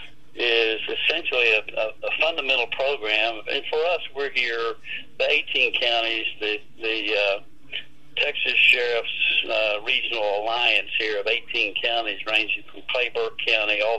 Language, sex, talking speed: English, male, 135 wpm